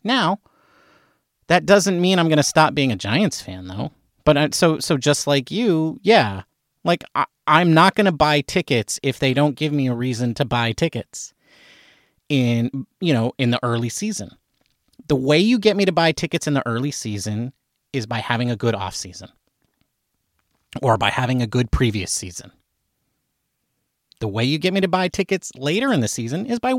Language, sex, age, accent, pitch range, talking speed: English, male, 30-49, American, 130-195 Hz, 195 wpm